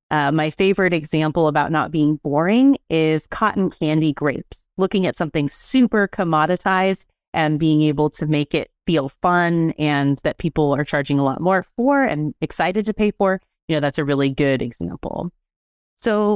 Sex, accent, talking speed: female, American, 170 wpm